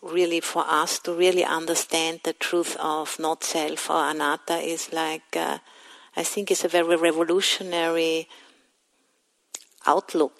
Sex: female